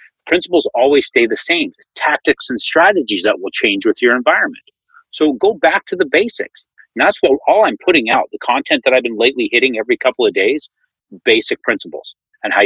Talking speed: 200 wpm